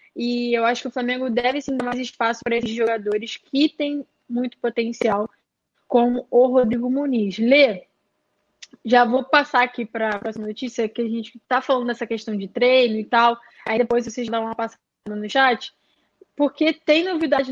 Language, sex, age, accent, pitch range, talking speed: Portuguese, female, 10-29, Brazilian, 235-275 Hz, 180 wpm